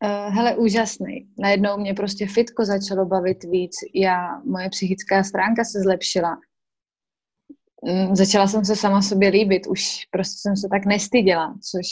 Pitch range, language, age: 190-215 Hz, Czech, 20-39